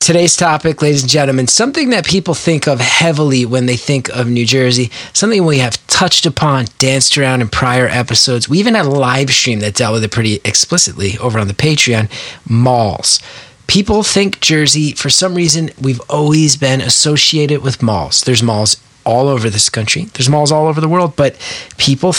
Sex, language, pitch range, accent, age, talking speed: male, English, 125-165 Hz, American, 30-49, 190 wpm